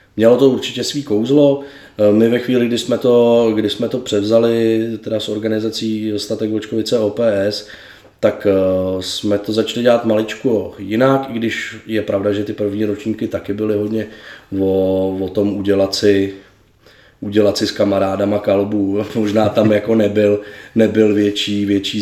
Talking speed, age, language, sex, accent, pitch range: 155 wpm, 20-39, Czech, male, native, 100-115 Hz